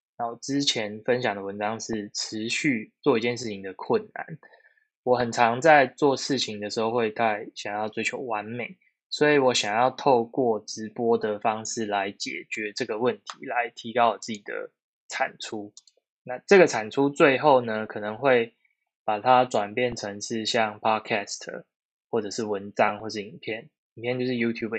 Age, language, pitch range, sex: 10-29, Chinese, 110-140 Hz, male